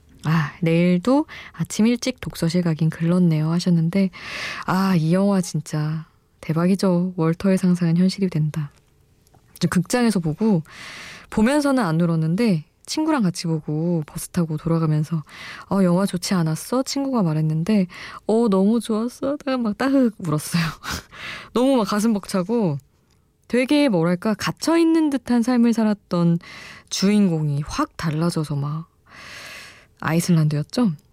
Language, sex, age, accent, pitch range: Korean, female, 20-39, native, 160-215 Hz